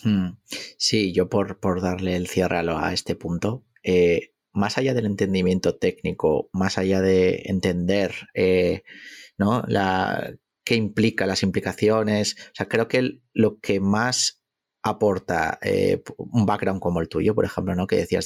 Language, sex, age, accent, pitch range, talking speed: Spanish, male, 30-49, Spanish, 95-110 Hz, 155 wpm